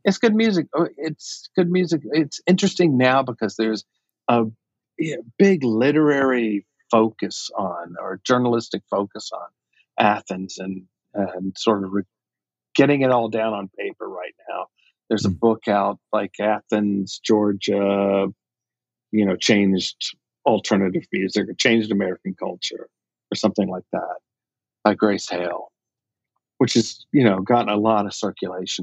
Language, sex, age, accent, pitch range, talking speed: English, male, 50-69, American, 105-135 Hz, 135 wpm